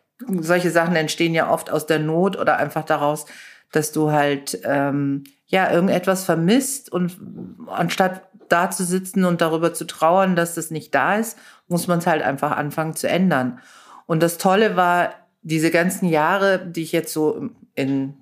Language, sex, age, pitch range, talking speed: German, female, 50-69, 145-175 Hz, 170 wpm